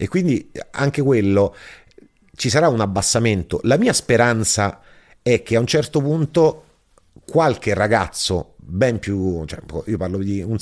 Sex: male